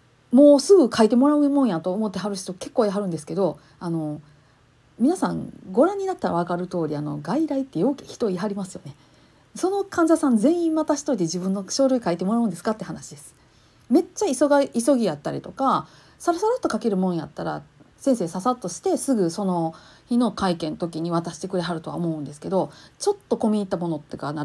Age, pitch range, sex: 40-59, 170-250 Hz, female